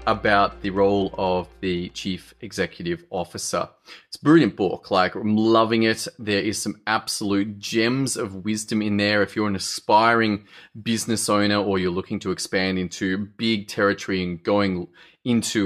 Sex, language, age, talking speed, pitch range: male, English, 30-49, 155 wpm, 100-120 Hz